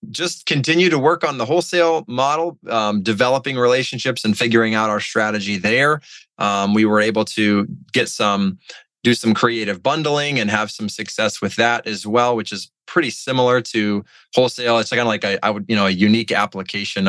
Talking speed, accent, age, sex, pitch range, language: 185 wpm, American, 20-39, male, 100-115 Hz, English